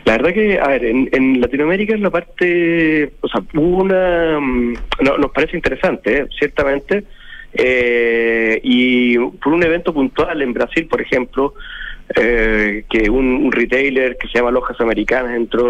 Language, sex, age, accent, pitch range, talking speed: Spanish, male, 30-49, Argentinian, 125-155 Hz, 165 wpm